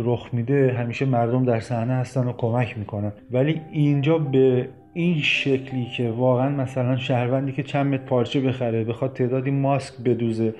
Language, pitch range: Persian, 125-140 Hz